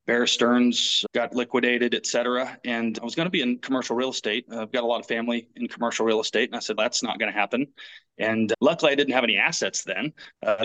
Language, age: English, 30-49